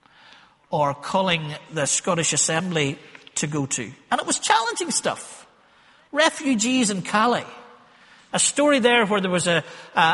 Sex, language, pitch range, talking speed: male, English, 170-225 Hz, 140 wpm